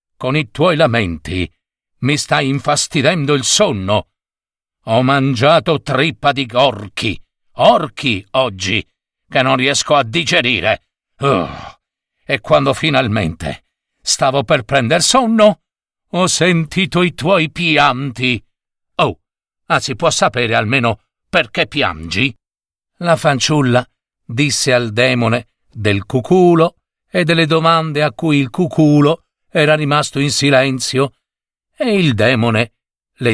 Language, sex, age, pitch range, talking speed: Italian, male, 50-69, 115-160 Hz, 115 wpm